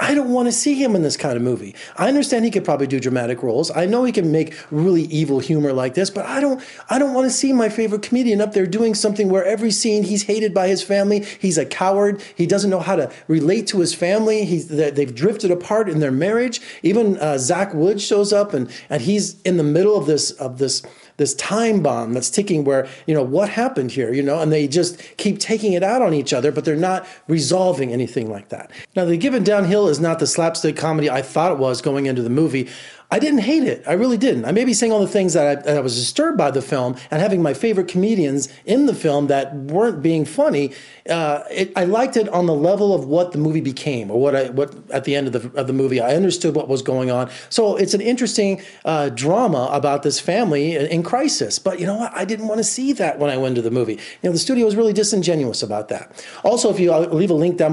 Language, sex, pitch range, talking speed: English, male, 140-210 Hz, 255 wpm